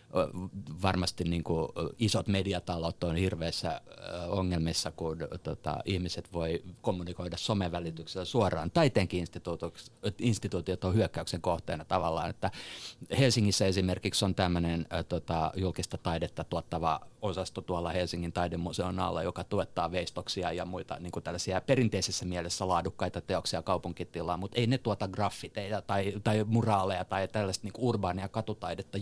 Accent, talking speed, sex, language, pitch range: native, 125 wpm, male, Finnish, 90-115 Hz